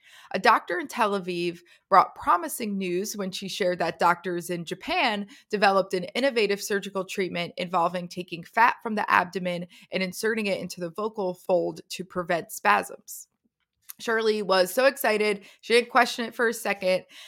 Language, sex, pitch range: English, female, 180-225 Hz